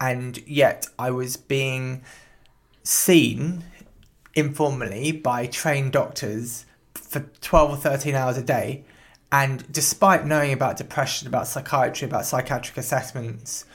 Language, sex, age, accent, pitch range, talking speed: English, male, 20-39, British, 120-150 Hz, 120 wpm